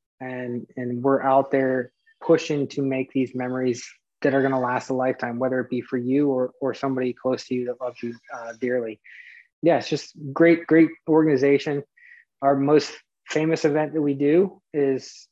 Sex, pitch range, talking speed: male, 130-150 Hz, 180 wpm